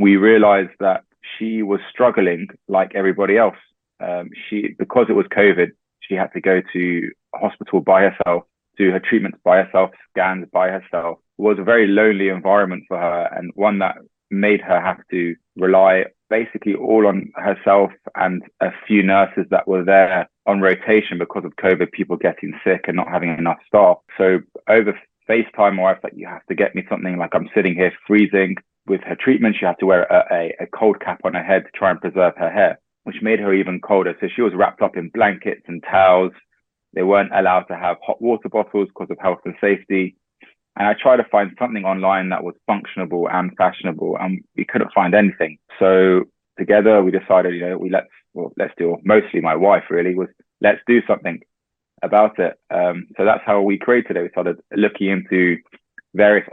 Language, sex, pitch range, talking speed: English, male, 90-105 Hz, 195 wpm